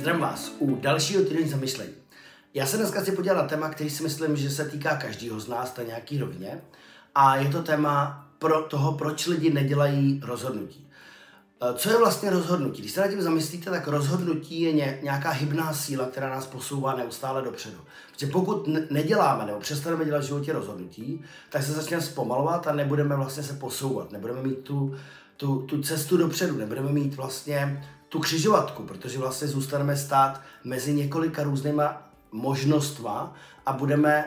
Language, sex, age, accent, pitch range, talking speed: Czech, male, 30-49, native, 135-155 Hz, 165 wpm